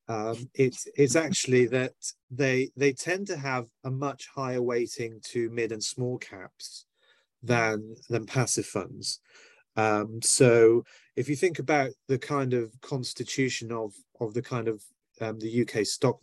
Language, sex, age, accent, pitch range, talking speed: English, male, 30-49, British, 115-140 Hz, 155 wpm